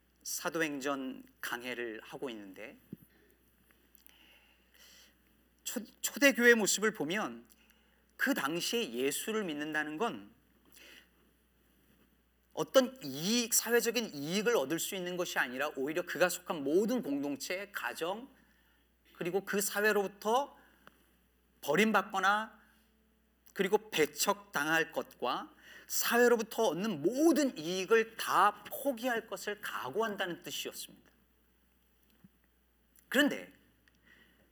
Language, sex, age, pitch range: Korean, male, 40-59, 145-225 Hz